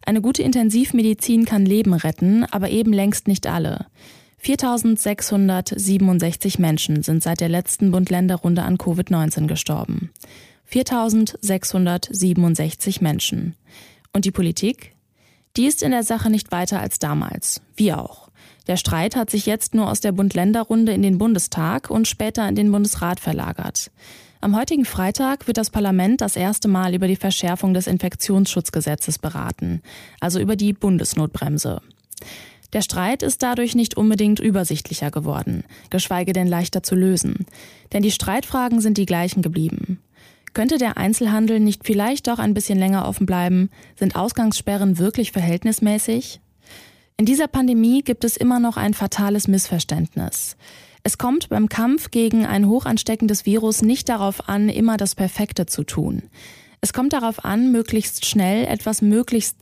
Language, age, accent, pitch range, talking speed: German, 20-39, German, 185-225 Hz, 145 wpm